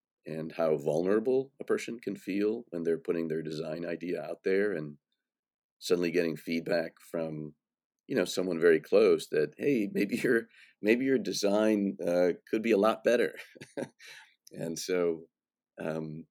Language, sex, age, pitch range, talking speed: English, male, 40-59, 75-90 Hz, 150 wpm